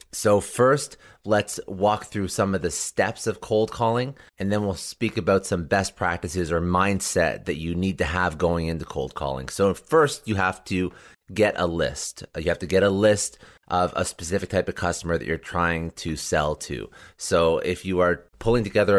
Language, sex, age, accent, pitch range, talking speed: English, male, 30-49, American, 85-100 Hz, 200 wpm